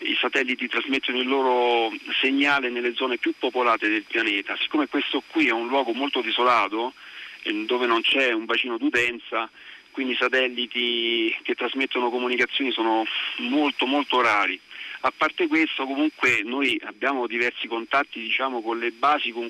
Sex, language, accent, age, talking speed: male, Italian, native, 40-59, 150 wpm